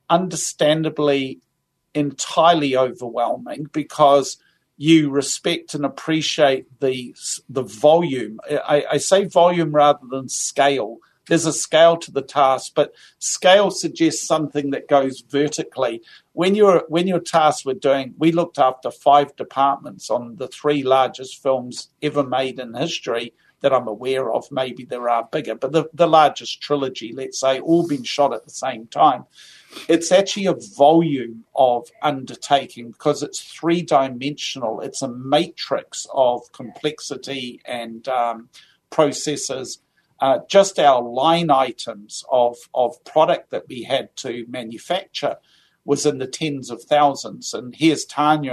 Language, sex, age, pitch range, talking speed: English, male, 50-69, 130-160 Hz, 145 wpm